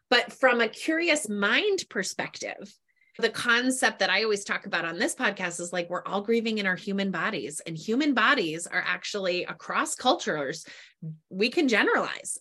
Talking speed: 170 wpm